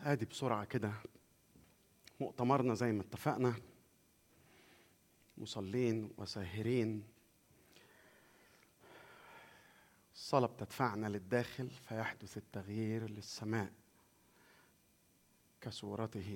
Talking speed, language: 60 wpm, Arabic